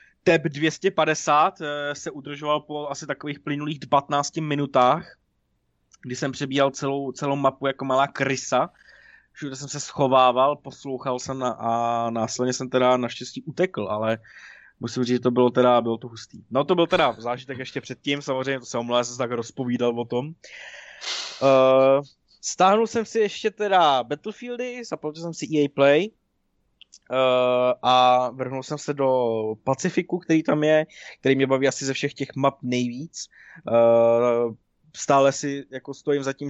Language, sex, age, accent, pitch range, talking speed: Czech, male, 20-39, native, 120-145 Hz, 155 wpm